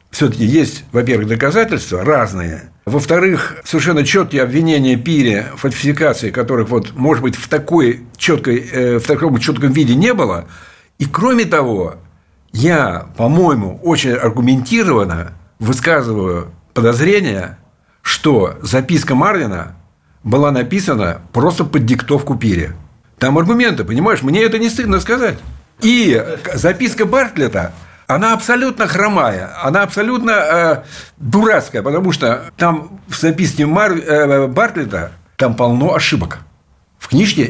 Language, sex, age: Russian, male, 60-79